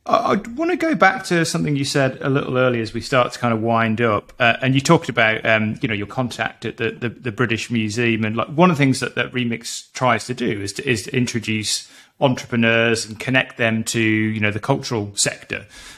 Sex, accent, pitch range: male, British, 115-135 Hz